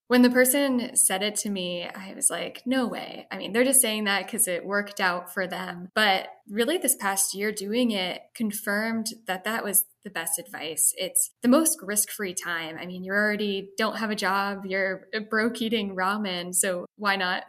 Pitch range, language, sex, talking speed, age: 180-230 Hz, English, female, 200 wpm, 10-29